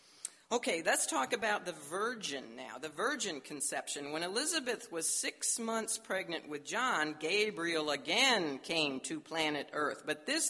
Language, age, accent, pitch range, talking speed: English, 50-69, American, 130-185 Hz, 150 wpm